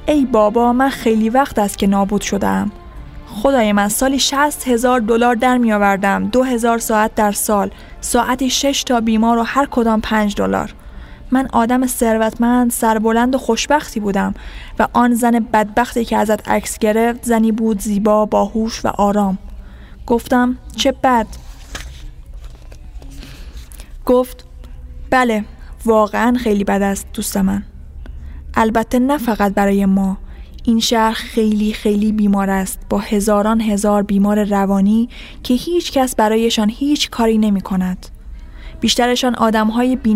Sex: female